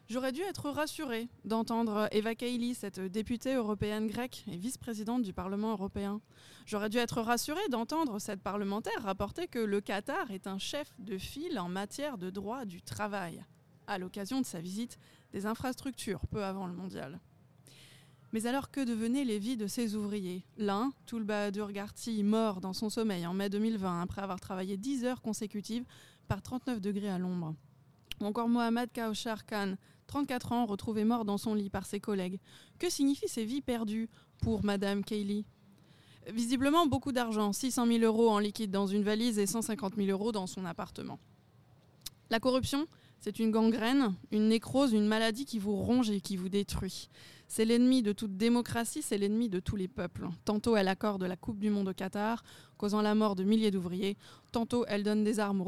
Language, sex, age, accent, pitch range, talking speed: French, female, 20-39, French, 200-235 Hz, 180 wpm